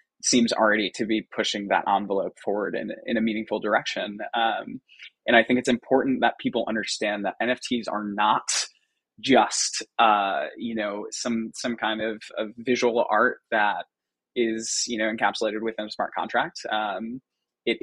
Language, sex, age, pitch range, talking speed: English, male, 20-39, 105-120 Hz, 160 wpm